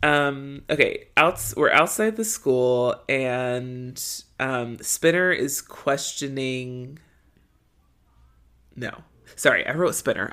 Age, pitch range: 30-49, 125-160 Hz